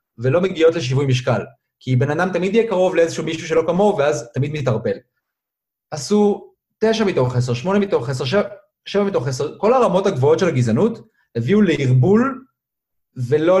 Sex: male